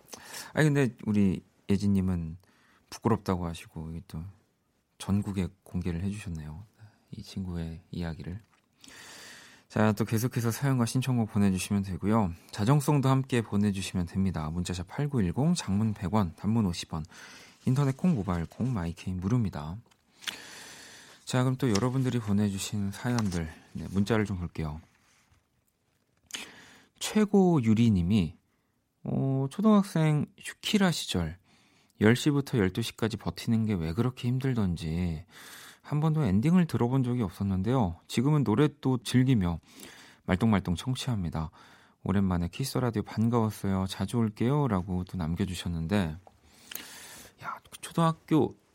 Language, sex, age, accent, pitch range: Korean, male, 40-59, native, 95-125 Hz